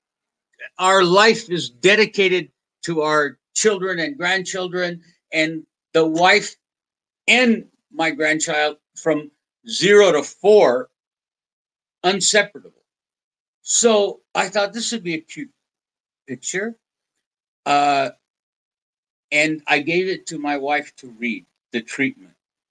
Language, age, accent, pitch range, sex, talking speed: English, 60-79, American, 155-210 Hz, male, 110 wpm